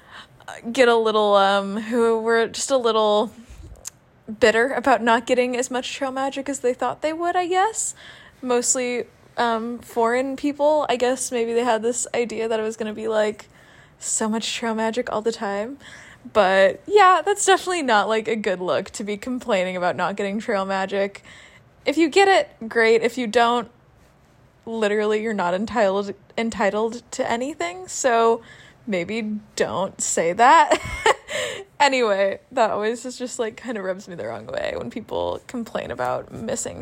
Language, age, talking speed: English, 20-39, 170 wpm